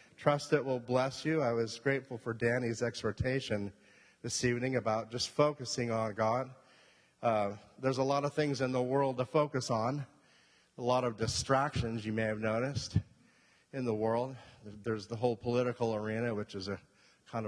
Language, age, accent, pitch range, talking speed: English, 30-49, American, 105-130 Hz, 170 wpm